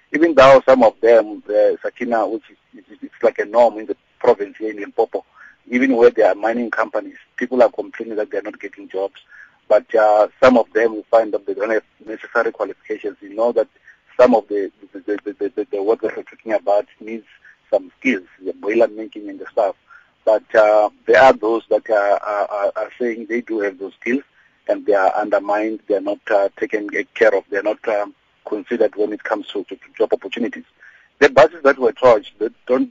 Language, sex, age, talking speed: English, male, 50-69, 205 wpm